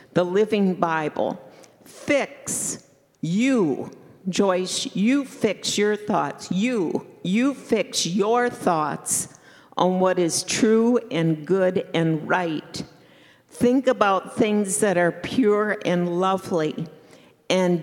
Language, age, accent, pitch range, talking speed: English, 50-69, American, 175-215 Hz, 110 wpm